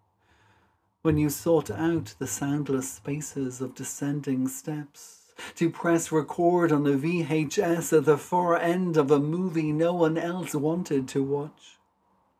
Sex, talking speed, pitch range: male, 140 wpm, 140-175 Hz